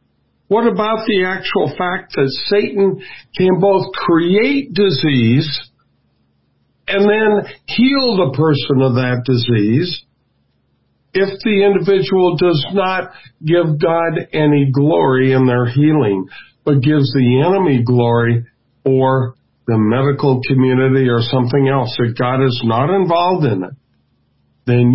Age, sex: 50-69, male